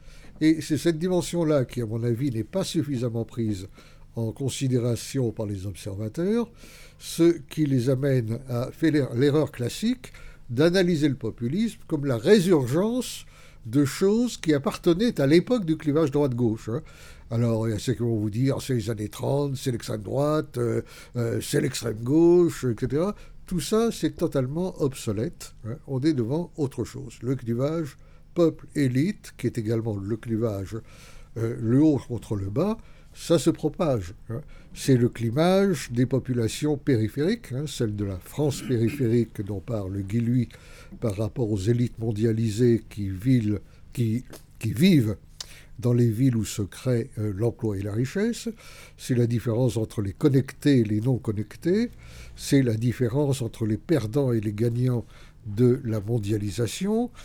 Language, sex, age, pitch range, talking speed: French, male, 60-79, 115-150 Hz, 155 wpm